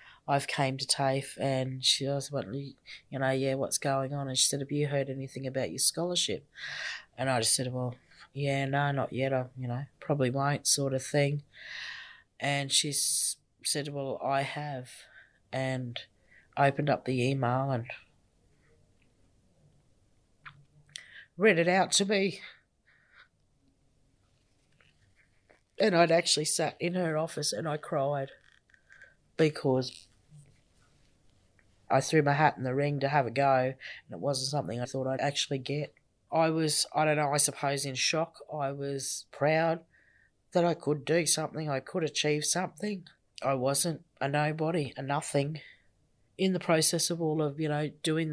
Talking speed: 155 wpm